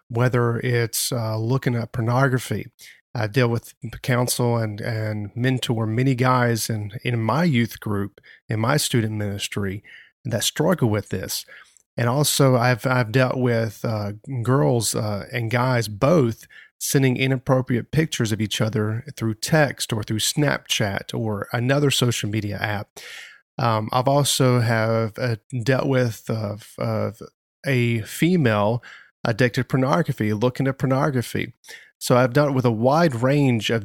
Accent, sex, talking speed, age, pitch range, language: American, male, 145 wpm, 40-59, 110-130 Hz, English